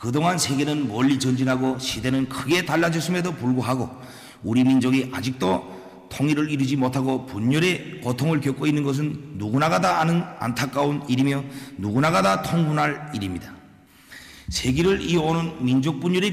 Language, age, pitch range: Korean, 40-59, 125-155 Hz